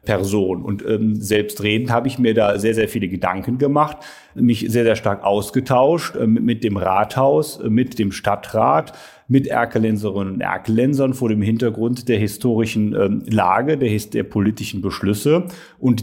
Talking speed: 155 wpm